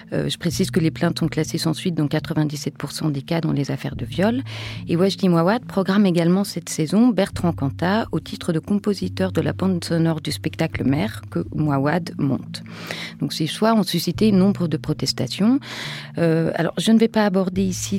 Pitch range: 145-185 Hz